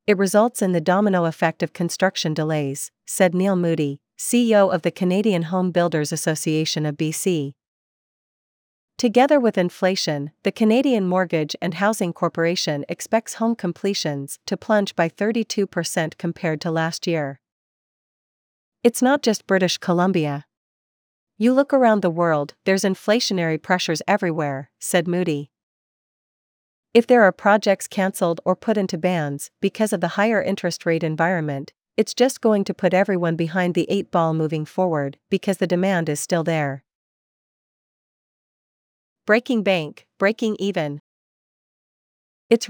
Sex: female